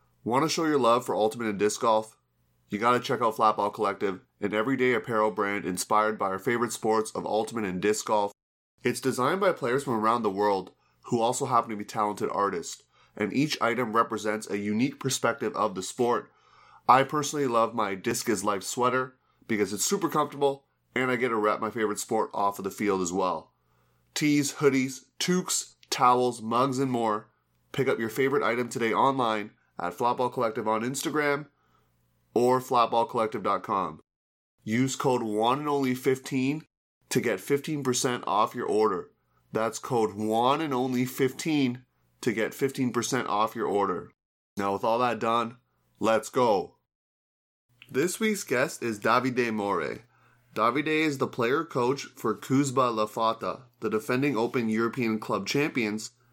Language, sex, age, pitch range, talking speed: English, male, 20-39, 105-130 Hz, 165 wpm